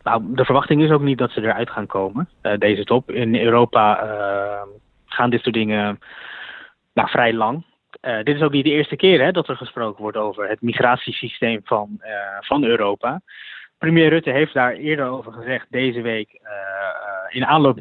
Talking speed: 175 wpm